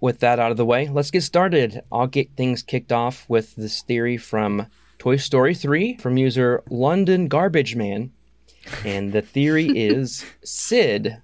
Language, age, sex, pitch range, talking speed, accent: English, 20-39, male, 110-150 Hz, 165 wpm, American